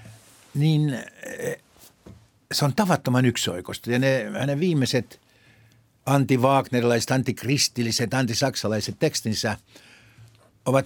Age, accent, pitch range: 60-79, native, 110-140 Hz